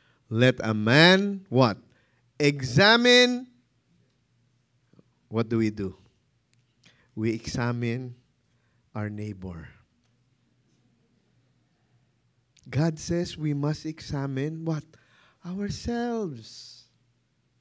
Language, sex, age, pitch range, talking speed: English, male, 20-39, 120-205 Hz, 70 wpm